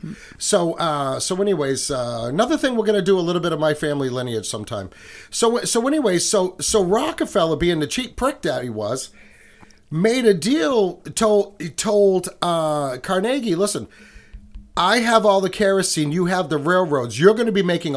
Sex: male